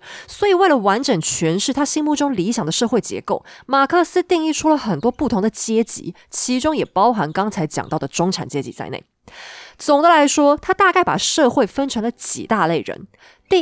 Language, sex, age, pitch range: Chinese, female, 20-39, 180-285 Hz